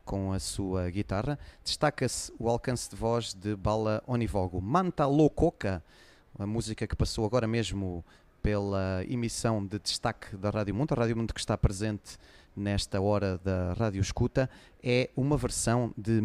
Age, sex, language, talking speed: 30-49, male, English, 155 wpm